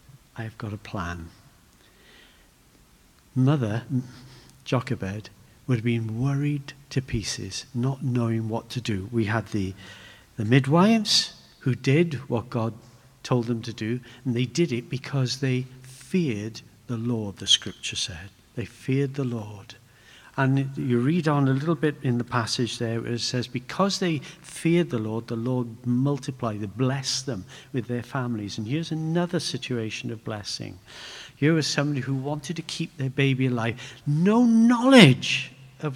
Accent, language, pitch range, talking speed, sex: British, English, 115-140 Hz, 150 wpm, male